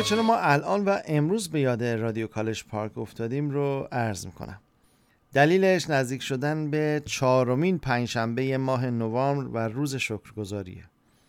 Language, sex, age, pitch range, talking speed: Persian, male, 40-59, 125-150 Hz, 135 wpm